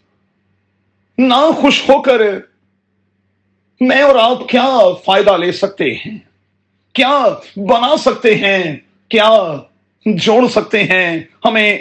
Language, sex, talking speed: Urdu, male, 105 wpm